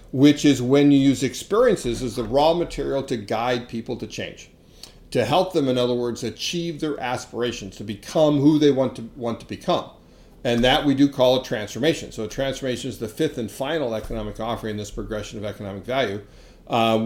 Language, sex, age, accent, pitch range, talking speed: English, male, 40-59, American, 115-140 Hz, 200 wpm